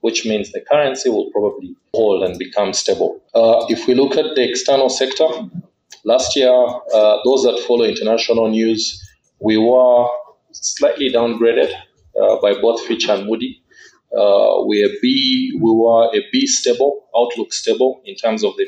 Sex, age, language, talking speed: male, 30-49, English, 155 wpm